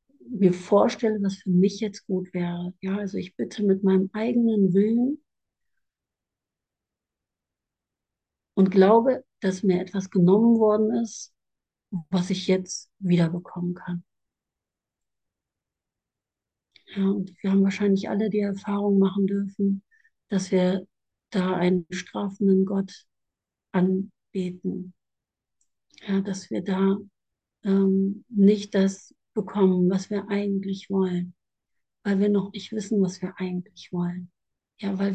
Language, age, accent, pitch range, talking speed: German, 60-79, German, 190-215 Hz, 120 wpm